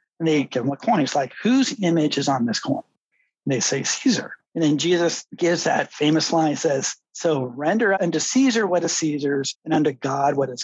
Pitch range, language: 150-220 Hz, English